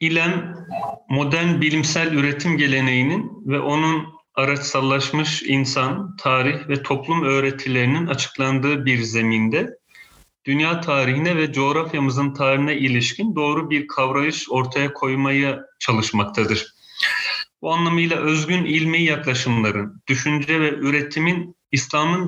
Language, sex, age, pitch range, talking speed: Turkish, male, 40-59, 130-160 Hz, 100 wpm